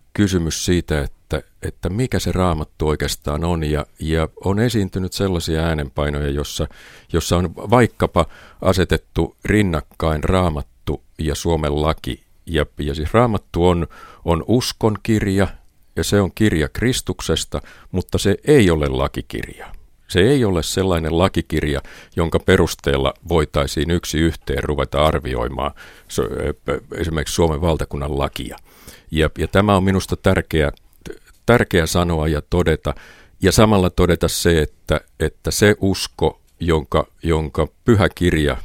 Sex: male